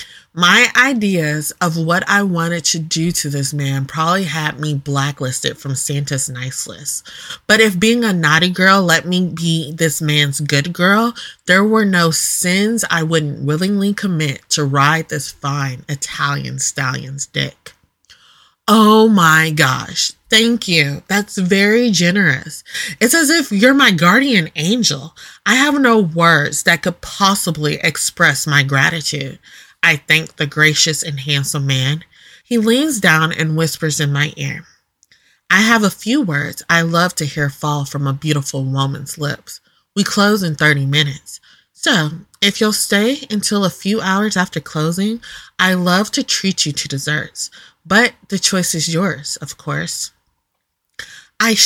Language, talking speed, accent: English, 155 wpm, American